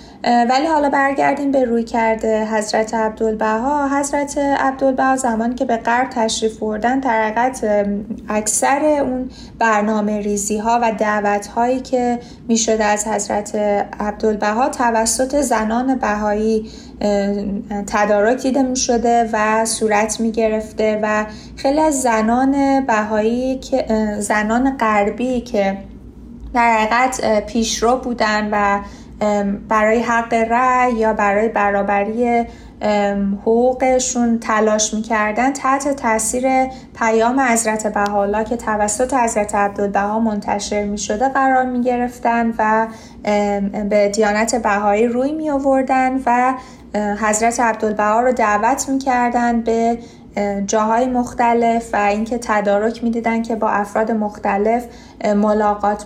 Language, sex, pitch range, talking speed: Persian, female, 210-245 Hz, 110 wpm